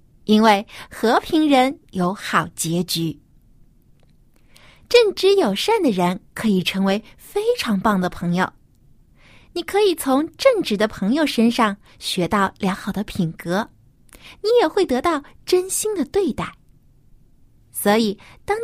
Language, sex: Chinese, female